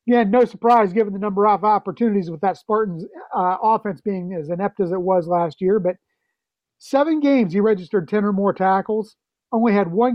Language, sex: English, male